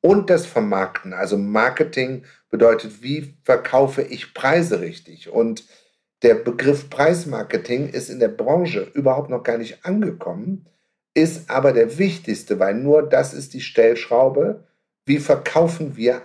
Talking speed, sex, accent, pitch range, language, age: 135 wpm, male, German, 125-170 Hz, German, 50-69